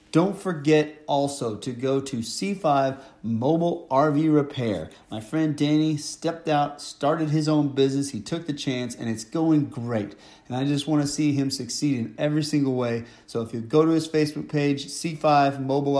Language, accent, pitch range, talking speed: English, American, 125-150 Hz, 185 wpm